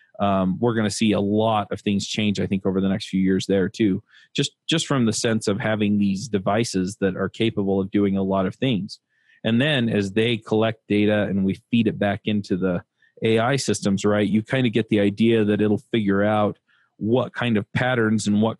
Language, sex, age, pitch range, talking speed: English, male, 30-49, 100-115 Hz, 225 wpm